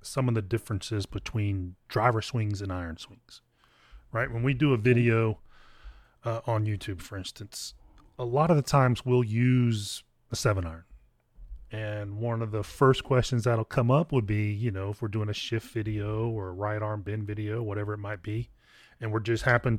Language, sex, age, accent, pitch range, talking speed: English, male, 30-49, American, 105-125 Hz, 195 wpm